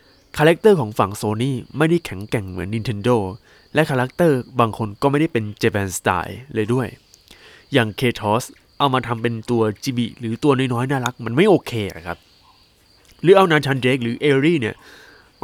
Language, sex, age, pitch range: Thai, male, 20-39, 105-155 Hz